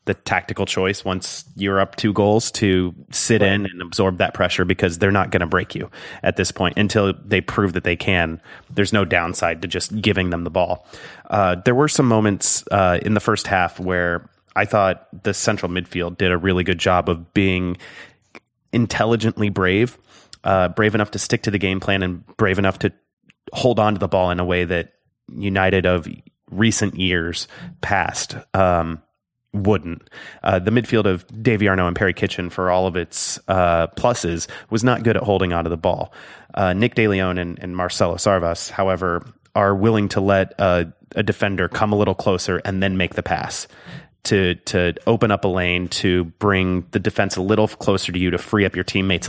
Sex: male